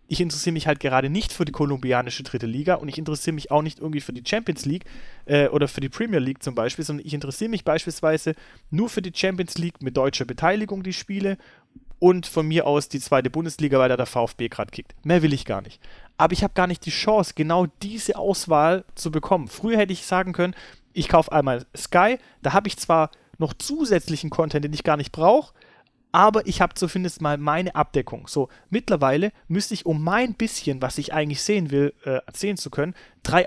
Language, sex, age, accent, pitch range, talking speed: German, male, 30-49, German, 145-185 Hz, 215 wpm